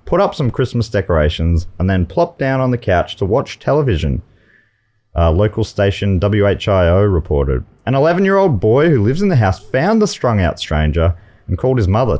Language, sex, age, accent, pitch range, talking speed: English, male, 30-49, Australian, 95-150 Hz, 175 wpm